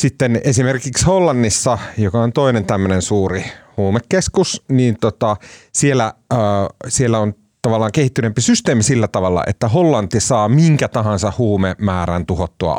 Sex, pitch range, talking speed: male, 100-135 Hz, 125 wpm